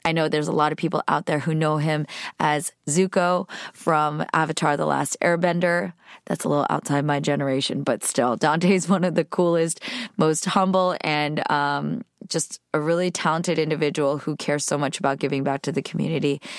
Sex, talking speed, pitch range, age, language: female, 185 wpm, 145-180 Hz, 20-39, English